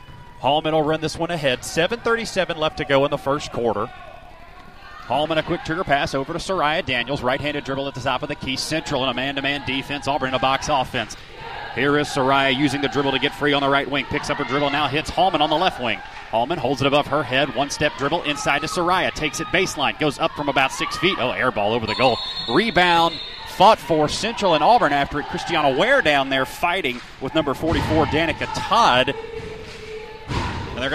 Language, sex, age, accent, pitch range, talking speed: English, male, 30-49, American, 140-185 Hz, 215 wpm